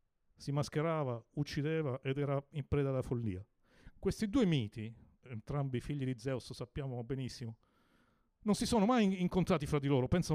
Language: Italian